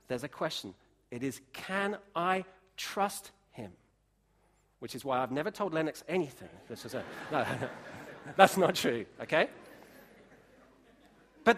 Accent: British